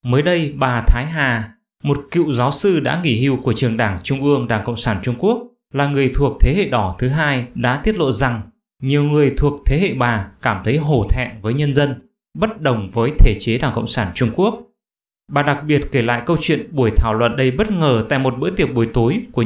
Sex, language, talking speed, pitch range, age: male, English, 235 wpm, 120-155 Hz, 20-39